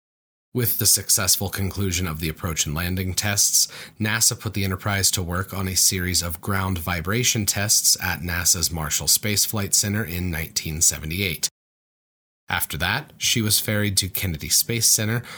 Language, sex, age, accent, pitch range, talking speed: English, male, 30-49, American, 90-110 Hz, 155 wpm